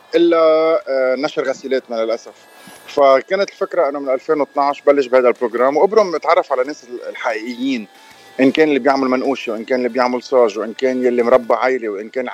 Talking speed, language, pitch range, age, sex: 165 wpm, Arabic, 130-160 Hz, 30-49, male